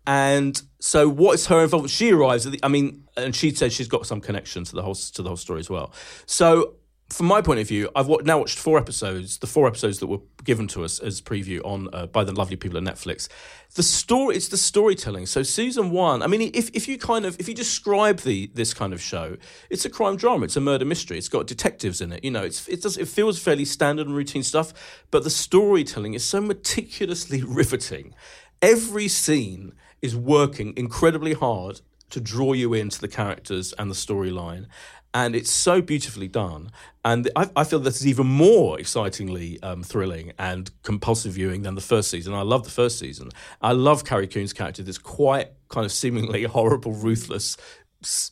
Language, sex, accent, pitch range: English, male, British, 100-150 Hz